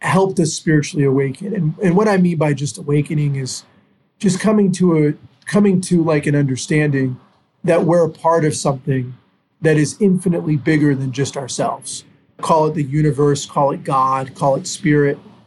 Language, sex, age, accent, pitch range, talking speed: English, male, 30-49, American, 145-180 Hz, 175 wpm